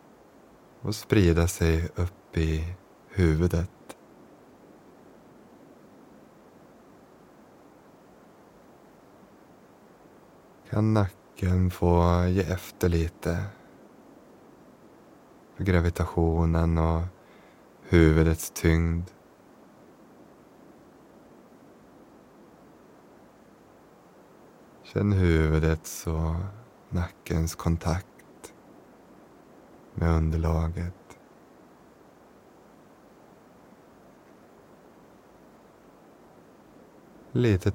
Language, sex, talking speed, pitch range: Swedish, male, 40 wpm, 80-90 Hz